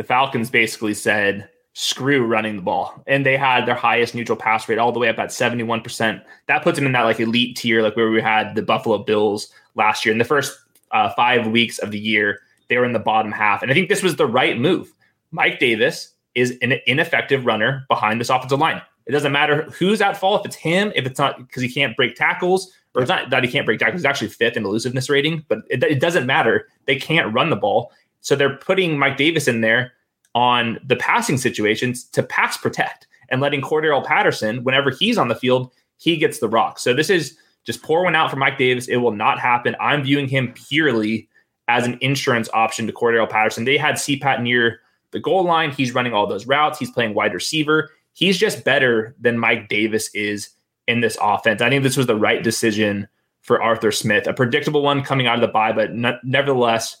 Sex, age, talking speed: male, 20-39, 220 wpm